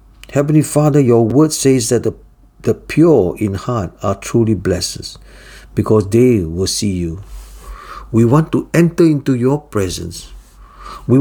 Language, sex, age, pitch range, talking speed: English, male, 50-69, 105-135 Hz, 145 wpm